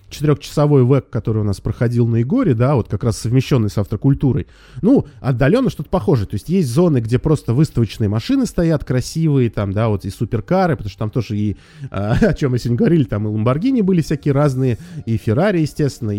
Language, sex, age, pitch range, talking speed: Russian, male, 20-39, 105-140 Hz, 195 wpm